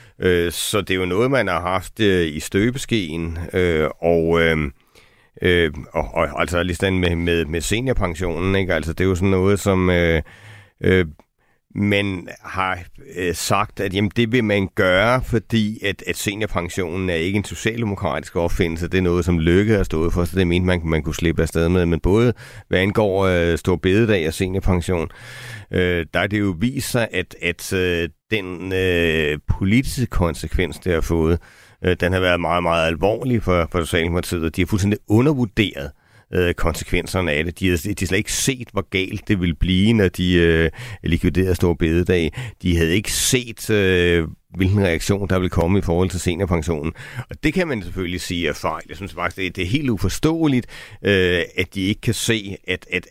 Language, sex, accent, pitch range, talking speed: Danish, male, native, 85-100 Hz, 190 wpm